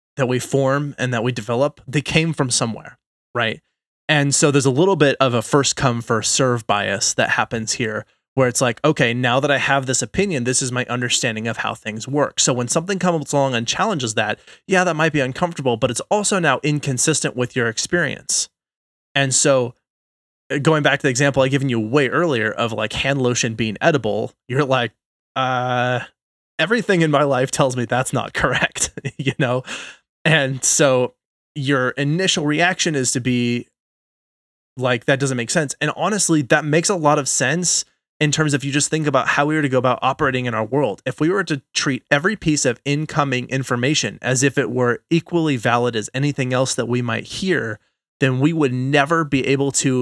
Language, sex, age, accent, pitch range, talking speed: English, male, 20-39, American, 125-150 Hz, 200 wpm